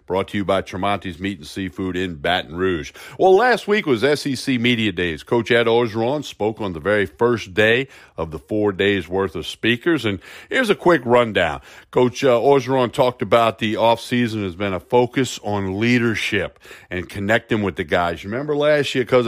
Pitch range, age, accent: 100-120 Hz, 50-69, American